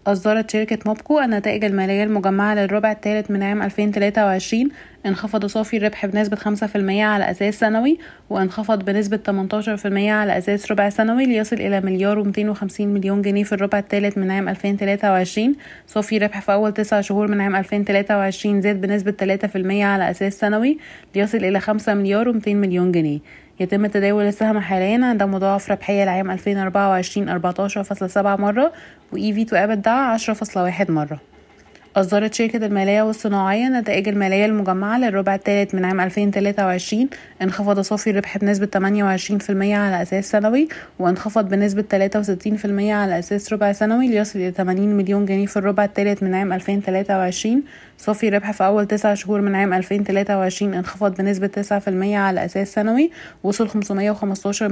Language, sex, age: Arabic, female, 20-39